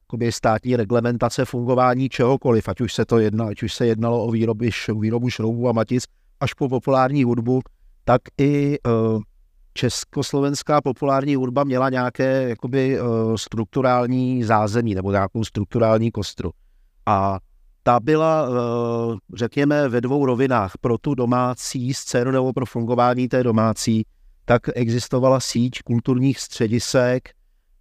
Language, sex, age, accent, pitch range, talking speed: Czech, male, 50-69, native, 110-130 Hz, 120 wpm